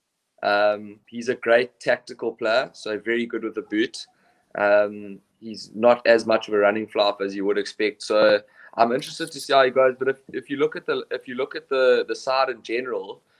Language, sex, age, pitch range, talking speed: English, male, 20-39, 105-125 Hz, 220 wpm